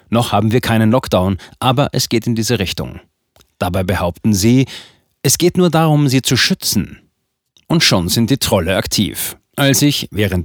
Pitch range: 105-130 Hz